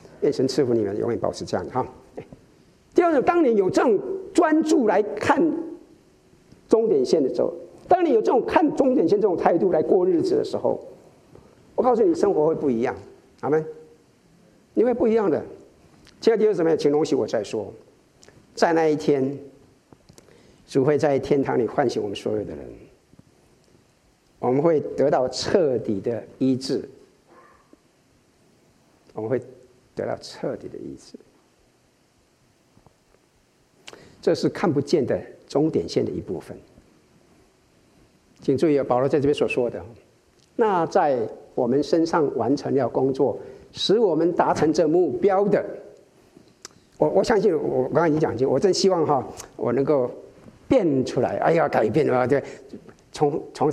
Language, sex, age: Chinese, male, 50-69